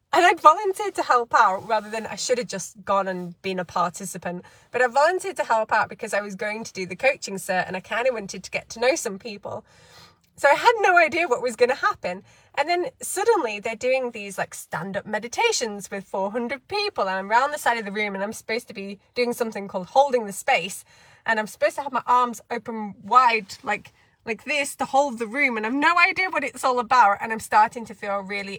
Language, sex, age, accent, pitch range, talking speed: English, female, 20-39, British, 190-265 Hz, 240 wpm